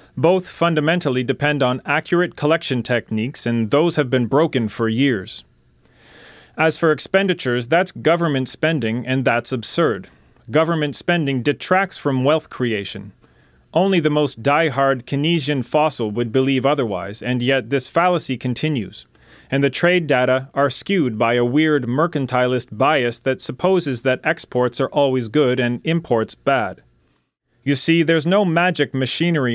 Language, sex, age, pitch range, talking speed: English, male, 40-59, 125-155 Hz, 140 wpm